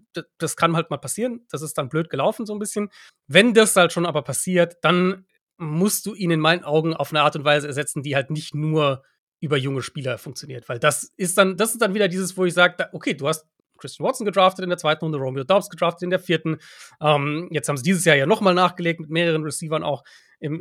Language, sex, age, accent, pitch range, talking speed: German, male, 30-49, German, 150-185 Hz, 240 wpm